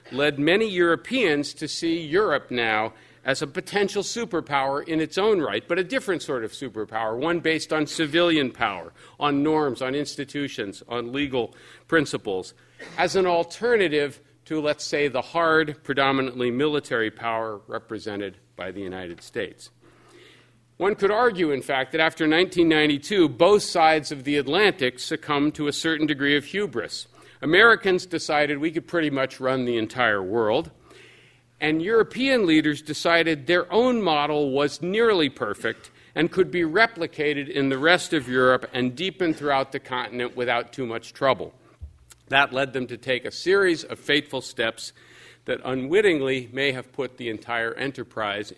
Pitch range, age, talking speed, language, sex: 125-165 Hz, 50-69, 155 wpm, English, male